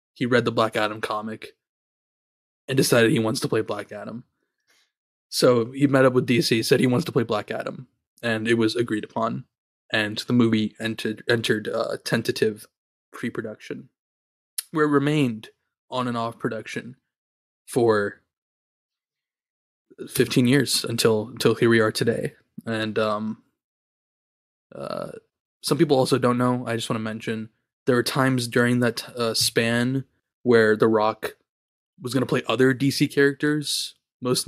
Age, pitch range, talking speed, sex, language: 20-39, 110-125 Hz, 150 wpm, male, English